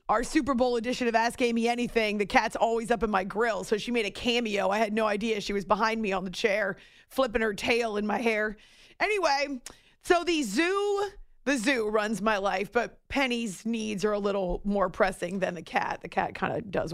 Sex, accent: female, American